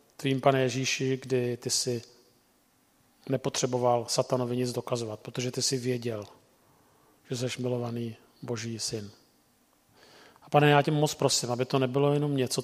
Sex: male